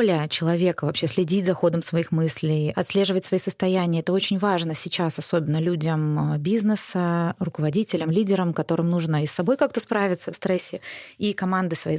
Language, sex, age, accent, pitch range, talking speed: Russian, female, 20-39, native, 175-220 Hz, 155 wpm